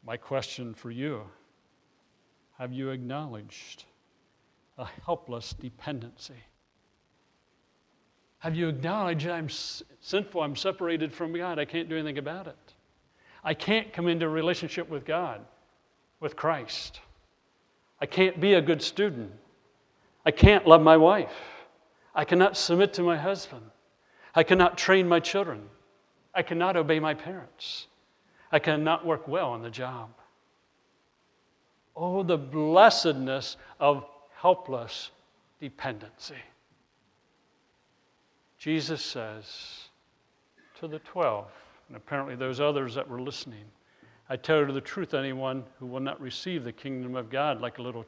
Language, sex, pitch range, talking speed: English, male, 125-170 Hz, 130 wpm